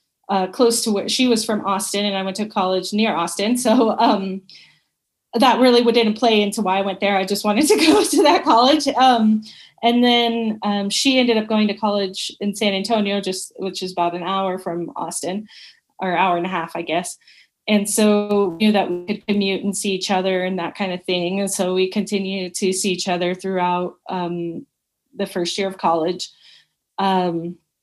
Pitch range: 190-220 Hz